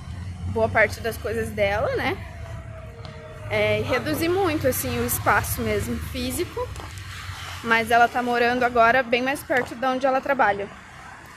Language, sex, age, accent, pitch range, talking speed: Portuguese, female, 20-39, Brazilian, 205-260 Hz, 135 wpm